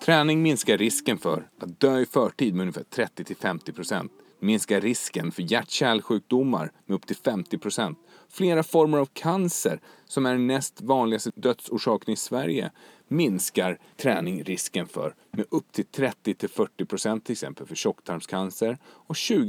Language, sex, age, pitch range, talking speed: Swedish, male, 30-49, 110-155 Hz, 135 wpm